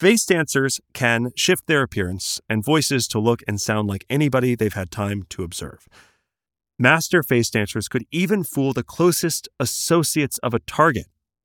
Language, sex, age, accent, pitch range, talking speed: English, male, 30-49, American, 95-140 Hz, 160 wpm